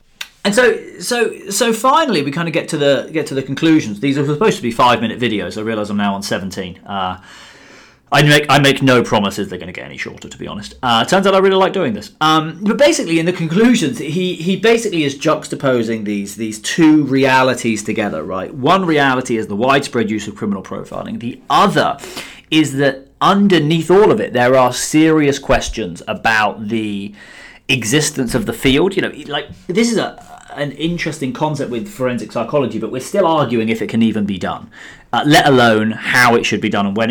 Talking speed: 210 wpm